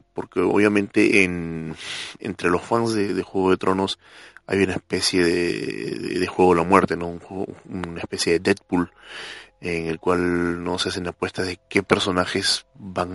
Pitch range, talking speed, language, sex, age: 85-95 Hz, 180 wpm, Spanish, male, 20-39